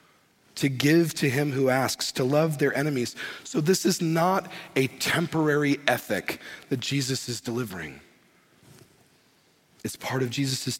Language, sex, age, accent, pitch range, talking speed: English, male, 40-59, American, 125-145 Hz, 140 wpm